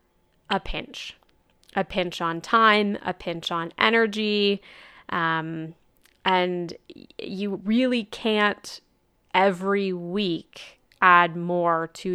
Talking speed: 100 wpm